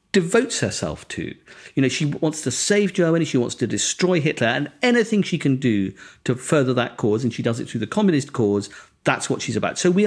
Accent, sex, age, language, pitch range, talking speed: British, male, 50-69, English, 115-155 Hz, 225 wpm